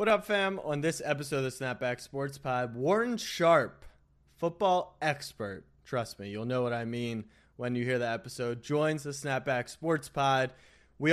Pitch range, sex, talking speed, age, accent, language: 125-155 Hz, male, 180 wpm, 20-39, American, English